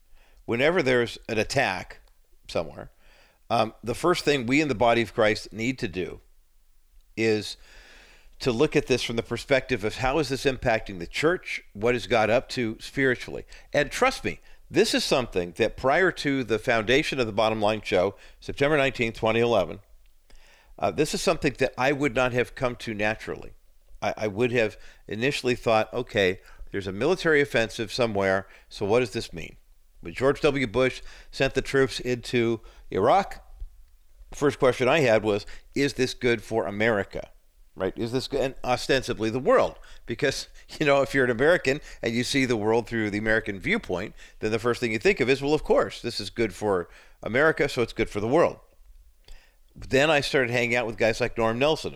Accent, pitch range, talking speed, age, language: American, 110-130 Hz, 185 wpm, 50-69, English